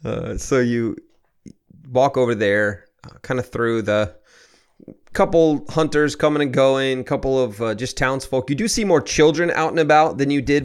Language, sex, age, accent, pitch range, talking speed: English, male, 30-49, American, 105-130 Hz, 180 wpm